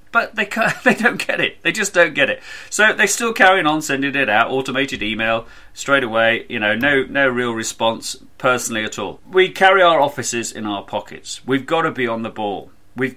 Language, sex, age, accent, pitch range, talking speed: English, male, 40-59, British, 110-140 Hz, 220 wpm